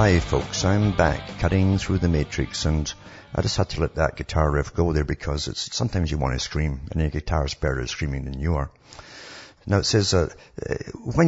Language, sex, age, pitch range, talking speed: English, male, 60-79, 75-100 Hz, 225 wpm